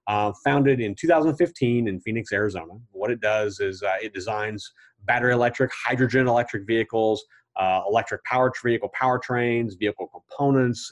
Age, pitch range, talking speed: 30-49, 105-130 Hz, 145 wpm